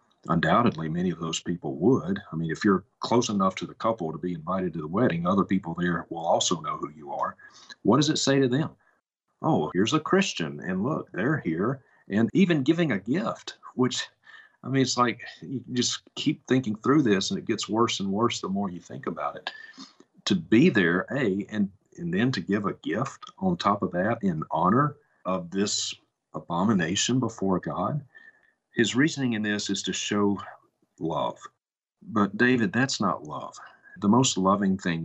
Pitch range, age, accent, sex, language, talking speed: 90-130 Hz, 50-69, American, male, English, 190 wpm